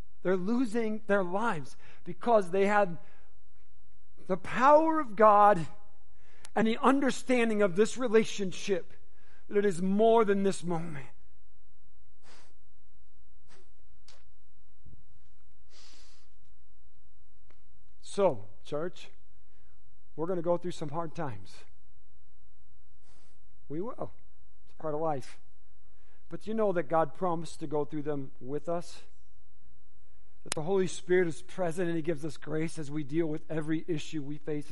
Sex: male